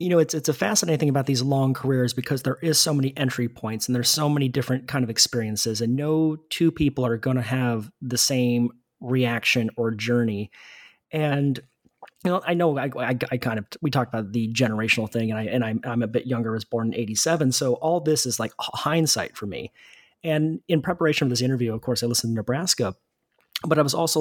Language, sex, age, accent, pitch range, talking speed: English, male, 30-49, American, 120-150 Hz, 225 wpm